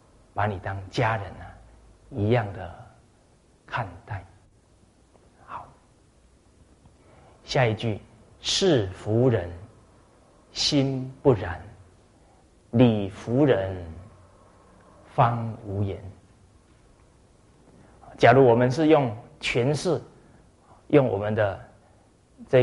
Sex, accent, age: male, native, 30-49